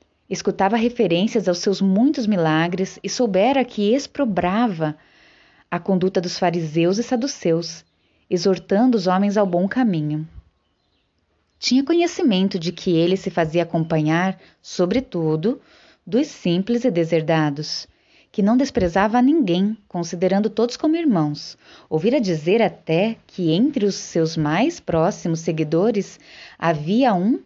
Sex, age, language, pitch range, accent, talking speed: female, 20-39, Portuguese, 160-220 Hz, Brazilian, 120 wpm